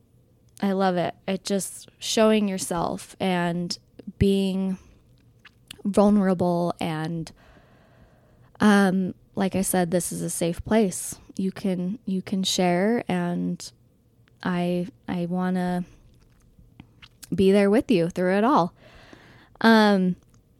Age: 10-29